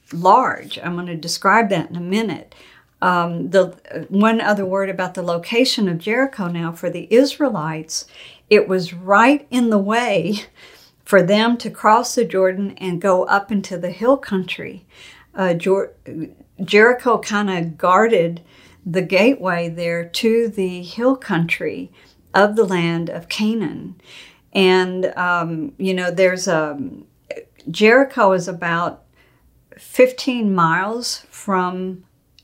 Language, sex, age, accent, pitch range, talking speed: English, female, 50-69, American, 175-220 Hz, 135 wpm